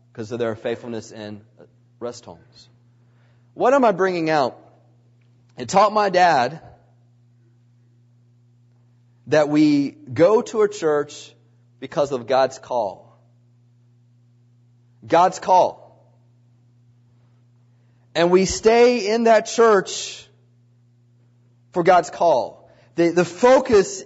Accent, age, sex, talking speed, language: American, 40-59, male, 100 wpm, English